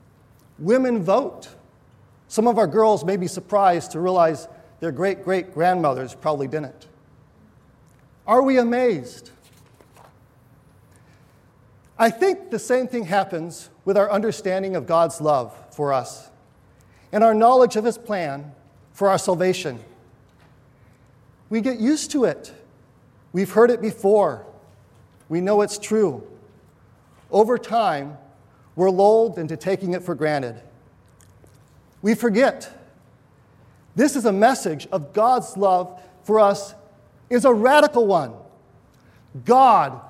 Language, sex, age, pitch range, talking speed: English, male, 40-59, 150-230 Hz, 120 wpm